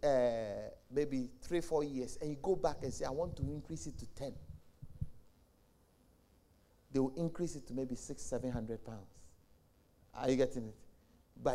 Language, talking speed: English, 165 wpm